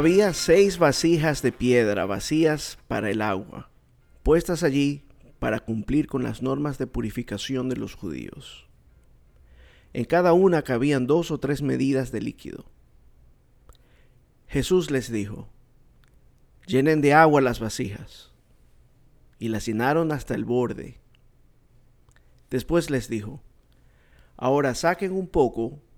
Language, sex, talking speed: Spanish, male, 120 wpm